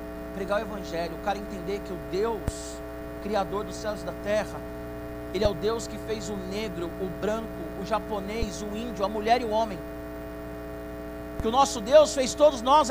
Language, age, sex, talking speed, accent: Portuguese, 50-69, male, 190 wpm, Brazilian